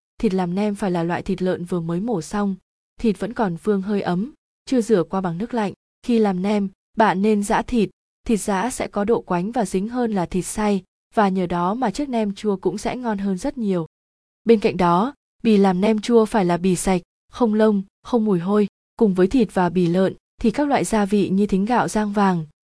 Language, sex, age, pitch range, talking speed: Vietnamese, female, 20-39, 185-225 Hz, 235 wpm